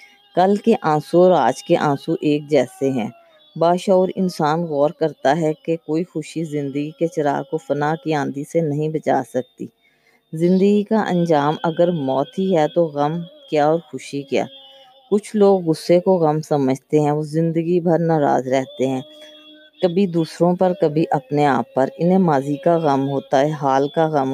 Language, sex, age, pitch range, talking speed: Urdu, female, 20-39, 145-180 Hz, 180 wpm